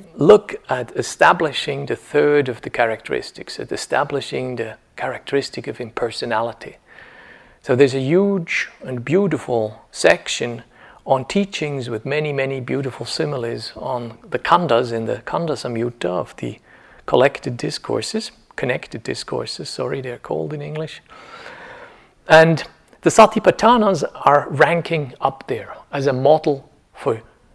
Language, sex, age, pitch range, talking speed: English, male, 50-69, 125-180 Hz, 120 wpm